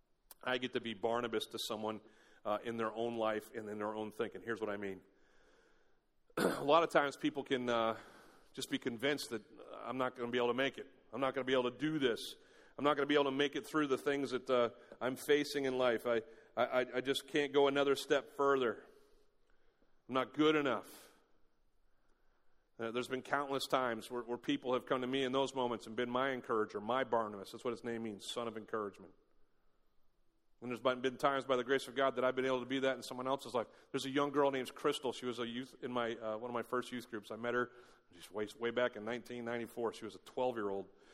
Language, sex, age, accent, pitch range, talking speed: English, male, 40-59, American, 110-135 Hz, 235 wpm